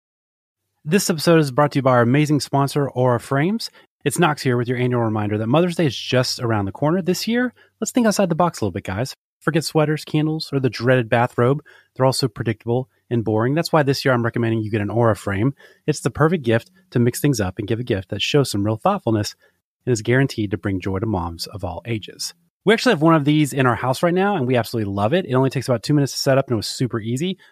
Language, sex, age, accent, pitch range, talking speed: English, male, 30-49, American, 105-145 Hz, 260 wpm